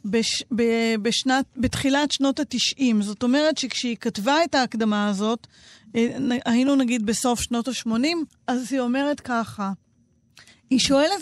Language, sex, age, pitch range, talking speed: Hebrew, female, 40-59, 230-300 Hz, 130 wpm